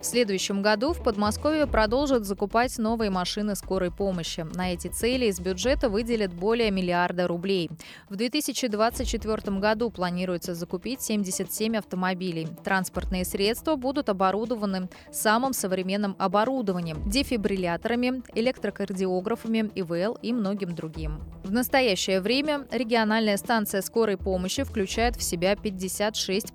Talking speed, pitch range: 115 wpm, 190-235 Hz